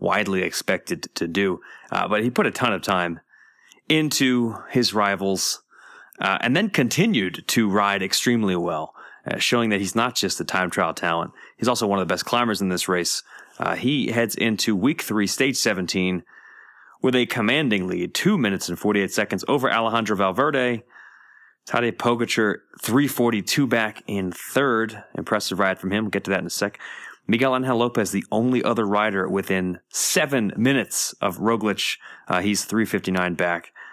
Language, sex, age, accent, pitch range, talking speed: English, male, 30-49, American, 95-115 Hz, 170 wpm